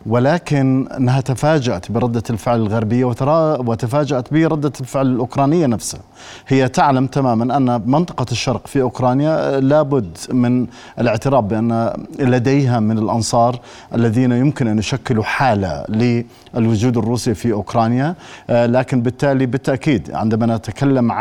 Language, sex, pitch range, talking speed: Arabic, male, 115-140 Hz, 110 wpm